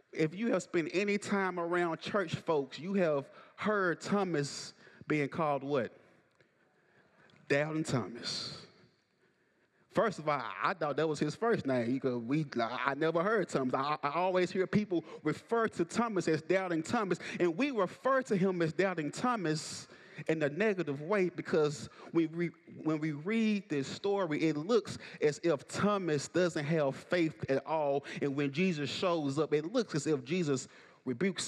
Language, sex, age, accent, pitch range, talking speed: English, male, 30-49, American, 145-185 Hz, 160 wpm